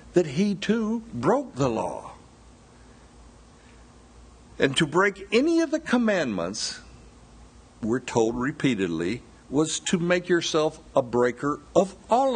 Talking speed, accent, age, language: 115 wpm, American, 60-79, English